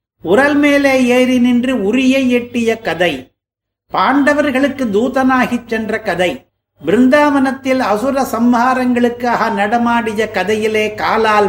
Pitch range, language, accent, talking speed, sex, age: 210-255 Hz, Tamil, native, 80 wpm, male, 50-69